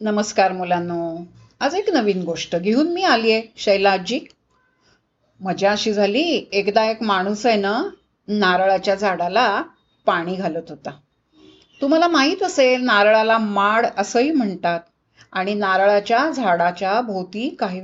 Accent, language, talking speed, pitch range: native, Marathi, 120 wpm, 195-285 Hz